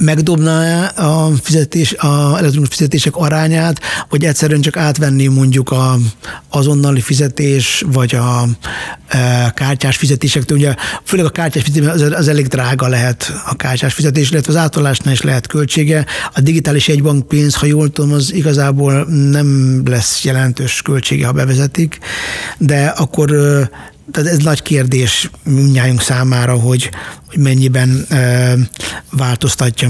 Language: Hungarian